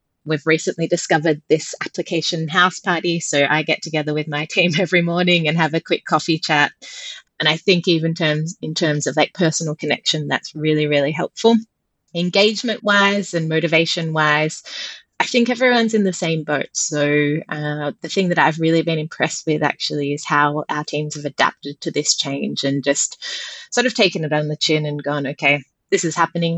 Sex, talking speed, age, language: female, 185 wpm, 30-49, English